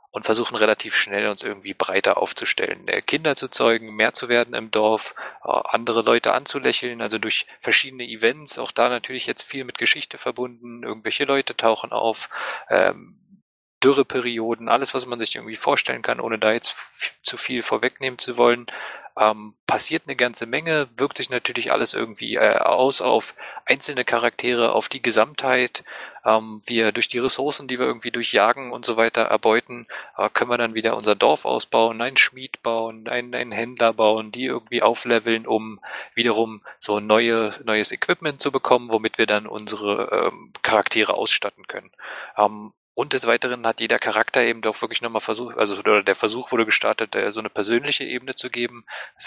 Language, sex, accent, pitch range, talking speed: German, male, German, 110-125 Hz, 175 wpm